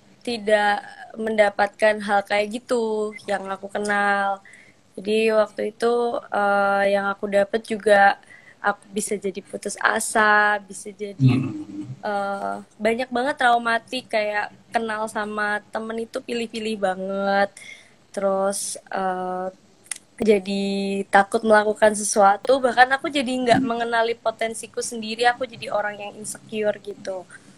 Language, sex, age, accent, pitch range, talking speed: Indonesian, female, 20-39, native, 200-230 Hz, 115 wpm